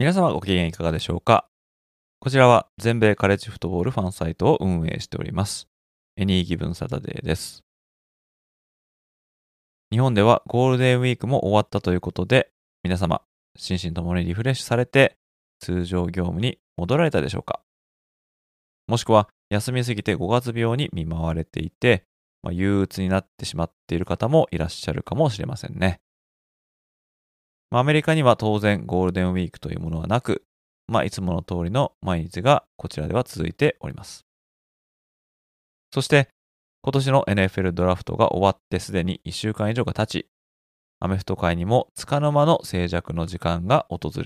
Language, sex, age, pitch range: Japanese, male, 20-39, 85-115 Hz